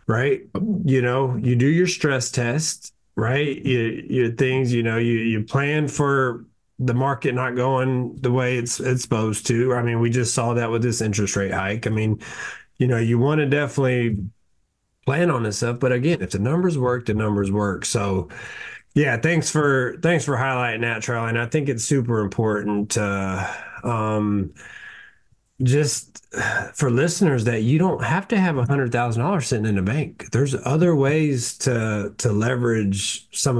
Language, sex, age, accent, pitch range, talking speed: English, male, 30-49, American, 105-130 Hz, 180 wpm